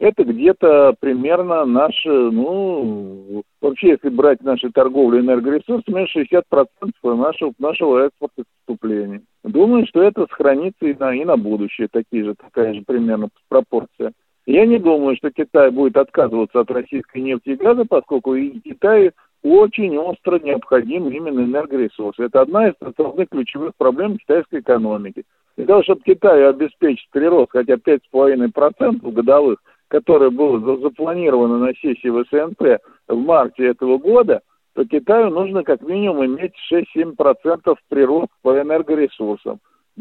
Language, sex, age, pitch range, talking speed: Russian, male, 50-69, 130-185 Hz, 140 wpm